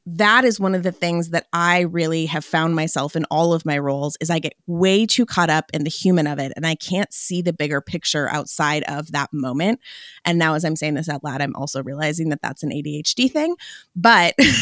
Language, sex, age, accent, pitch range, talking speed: English, female, 20-39, American, 155-215 Hz, 235 wpm